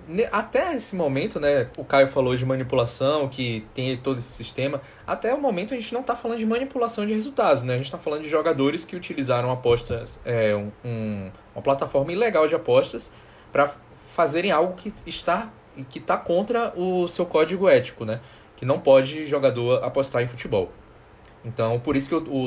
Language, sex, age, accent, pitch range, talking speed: Portuguese, male, 20-39, Brazilian, 115-165 Hz, 185 wpm